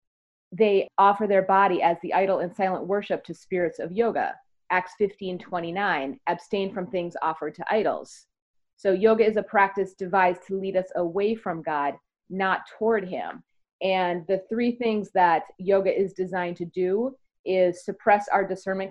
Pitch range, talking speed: 180-205 Hz, 165 wpm